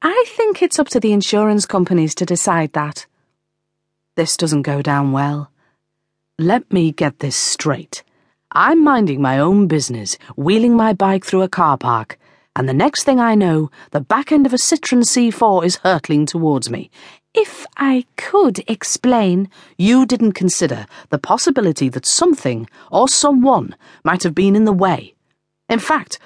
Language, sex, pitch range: English, female, 160-250 Hz